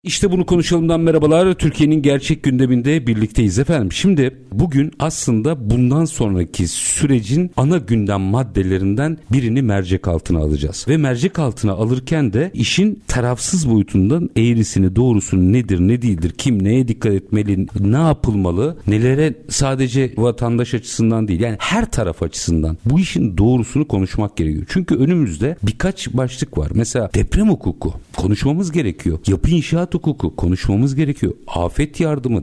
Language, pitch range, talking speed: Turkish, 100-150 Hz, 135 wpm